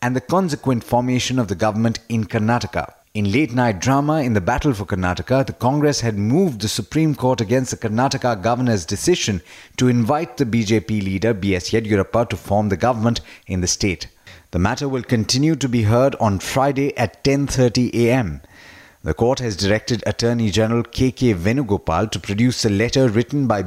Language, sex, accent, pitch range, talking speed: English, male, Indian, 105-130 Hz, 175 wpm